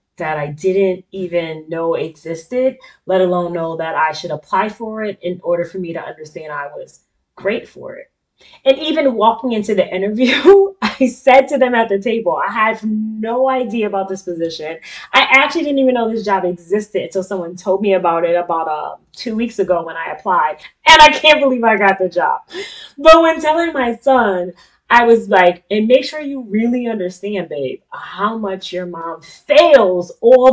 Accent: American